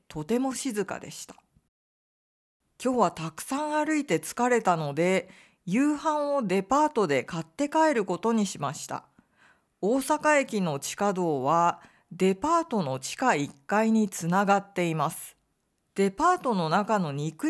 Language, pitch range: Japanese, 180-280 Hz